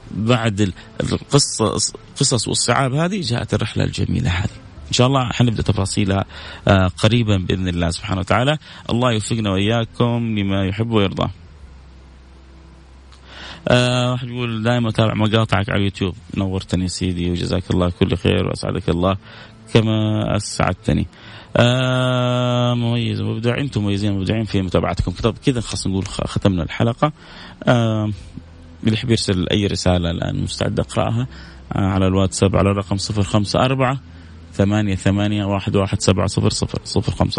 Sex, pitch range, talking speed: male, 95-115 Hz, 115 wpm